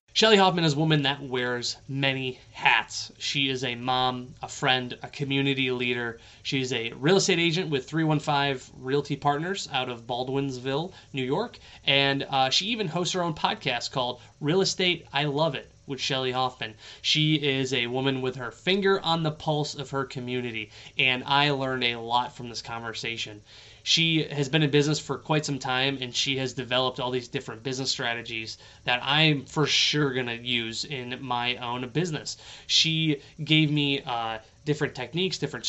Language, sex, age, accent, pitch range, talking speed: English, male, 20-39, American, 125-150 Hz, 180 wpm